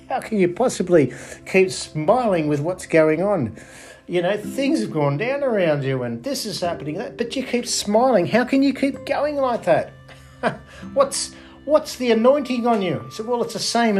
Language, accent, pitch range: English, Australian, 155-225 Hz